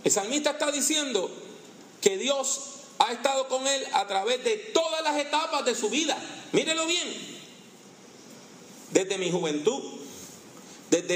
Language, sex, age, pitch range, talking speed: English, male, 40-59, 225-310 Hz, 135 wpm